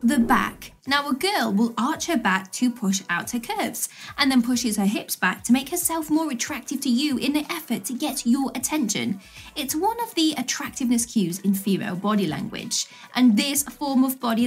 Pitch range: 225-290 Hz